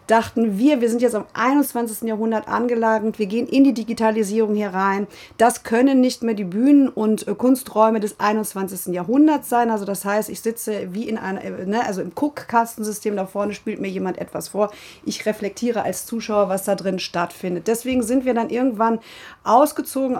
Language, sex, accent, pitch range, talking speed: German, female, German, 205-245 Hz, 185 wpm